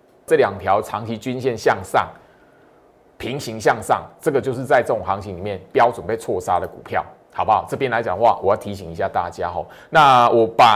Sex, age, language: male, 20-39, Chinese